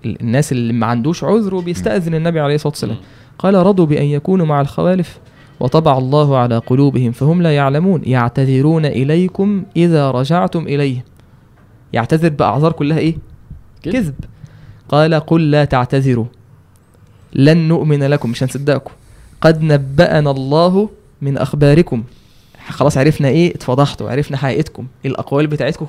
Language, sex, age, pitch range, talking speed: Arabic, male, 20-39, 130-160 Hz, 125 wpm